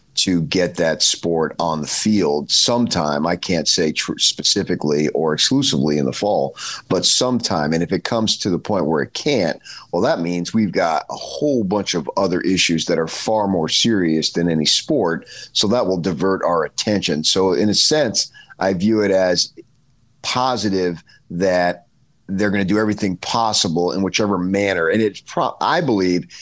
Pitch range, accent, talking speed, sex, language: 85-105 Hz, American, 175 wpm, male, English